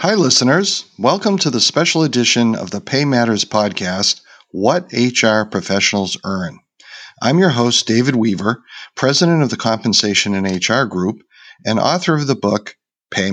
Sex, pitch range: male, 100-130 Hz